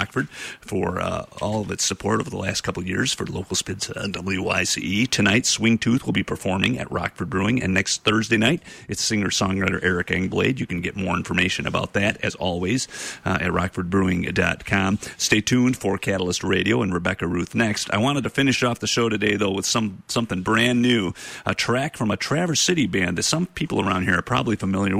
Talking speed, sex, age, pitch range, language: 200 wpm, male, 40-59, 95-120 Hz, English